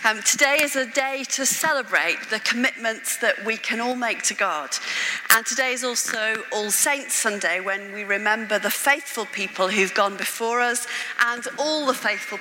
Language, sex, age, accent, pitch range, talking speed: English, female, 40-59, British, 210-260 Hz, 180 wpm